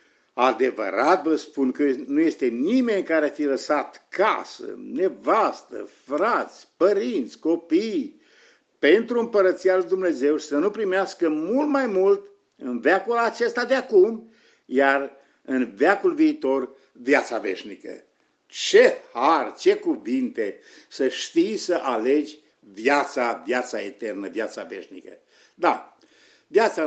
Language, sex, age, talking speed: Romanian, male, 60-79, 115 wpm